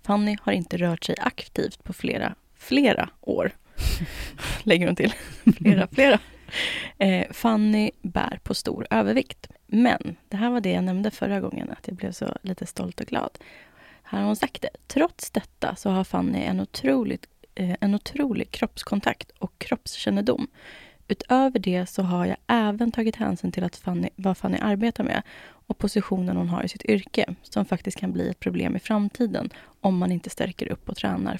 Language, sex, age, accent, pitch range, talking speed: Swedish, female, 20-39, native, 180-225 Hz, 170 wpm